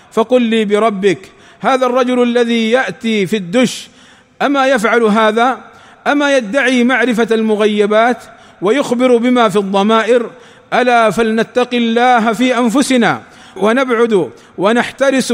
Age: 50-69